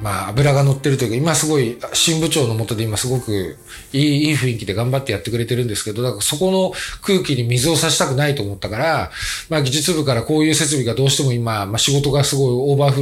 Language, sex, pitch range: Japanese, male, 120-155 Hz